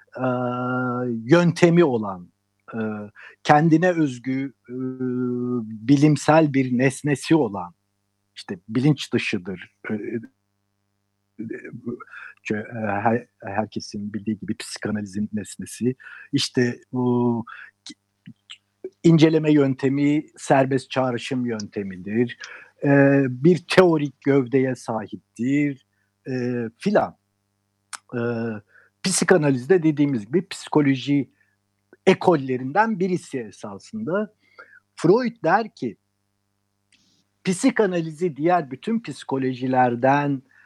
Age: 60-79